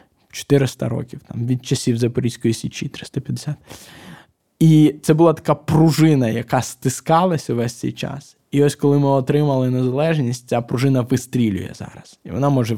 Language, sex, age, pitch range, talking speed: Ukrainian, male, 20-39, 125-150 Hz, 145 wpm